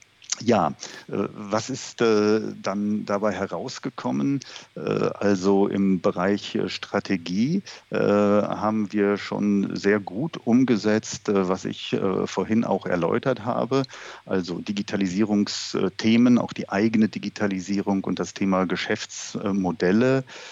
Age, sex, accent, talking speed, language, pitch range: 50-69, male, German, 95 wpm, German, 95-110 Hz